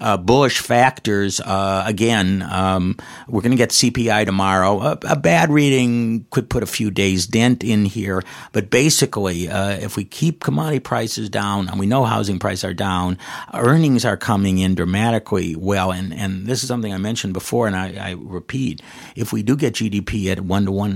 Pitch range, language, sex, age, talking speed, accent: 95-110 Hz, English, male, 50-69, 190 wpm, American